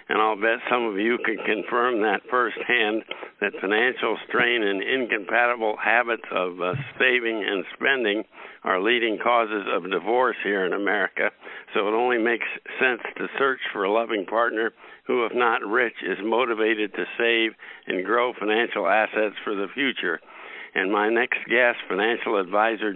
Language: English